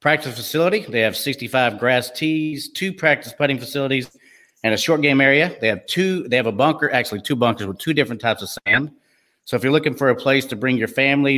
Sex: male